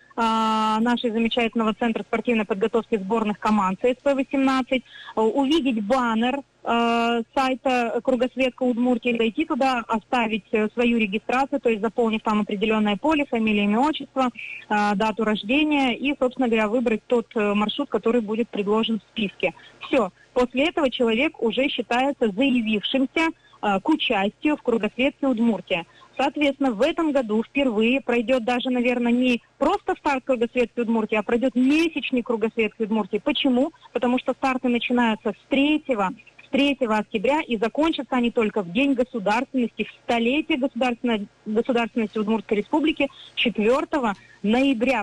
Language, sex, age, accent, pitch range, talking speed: Russian, female, 30-49, native, 225-275 Hz, 125 wpm